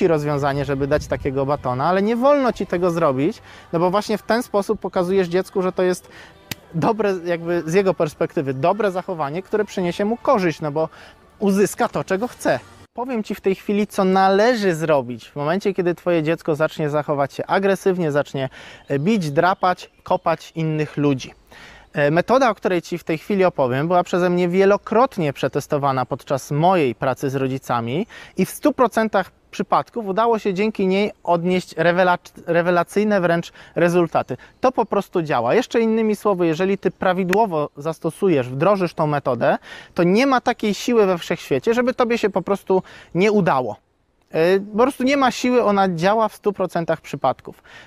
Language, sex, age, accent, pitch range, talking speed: Polish, male, 20-39, native, 155-205 Hz, 165 wpm